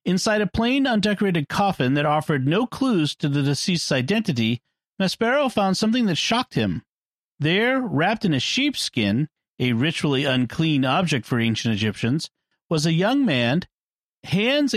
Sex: male